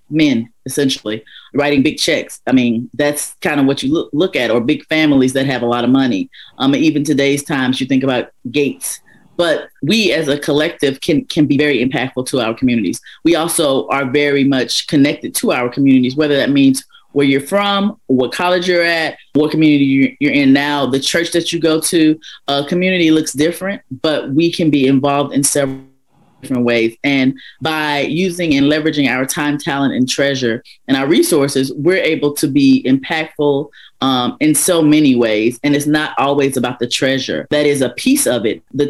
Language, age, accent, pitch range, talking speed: English, 30-49, American, 135-165 Hz, 195 wpm